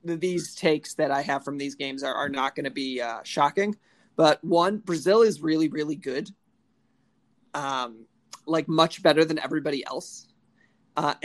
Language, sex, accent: English, male, American